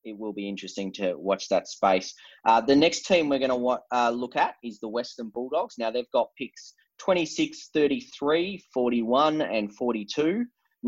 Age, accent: 20-39, Australian